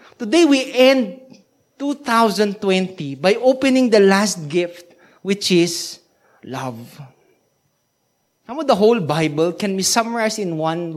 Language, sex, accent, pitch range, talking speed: English, male, Filipino, 185-245 Hz, 120 wpm